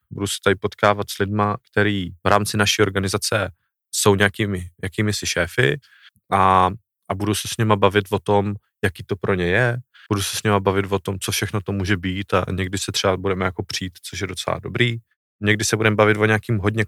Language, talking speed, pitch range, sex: Czech, 215 wpm, 95-110 Hz, male